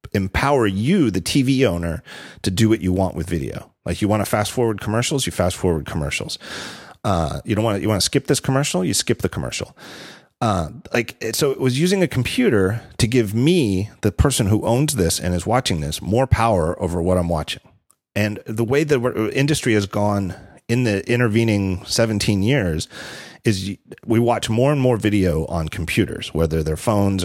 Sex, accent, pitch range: male, American, 90-115 Hz